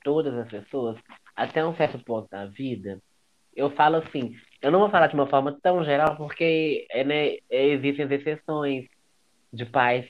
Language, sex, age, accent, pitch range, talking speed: Portuguese, male, 20-39, Brazilian, 125-150 Hz, 170 wpm